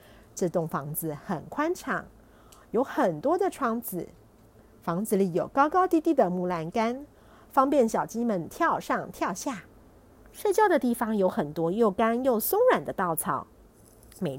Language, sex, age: Chinese, female, 50-69